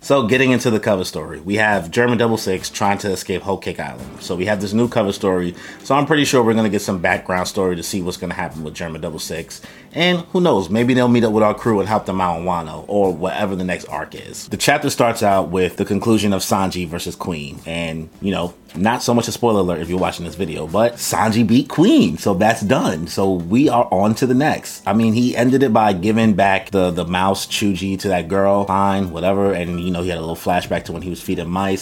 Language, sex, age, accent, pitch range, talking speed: English, male, 30-49, American, 90-110 Hz, 260 wpm